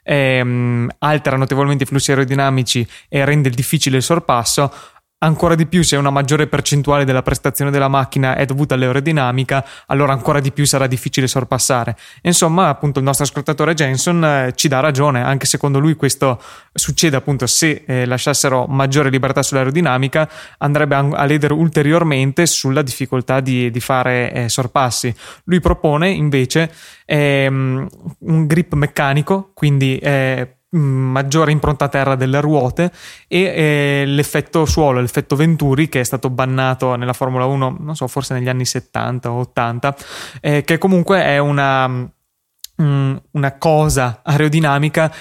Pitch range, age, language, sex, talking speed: 130-150 Hz, 20-39, Italian, male, 145 wpm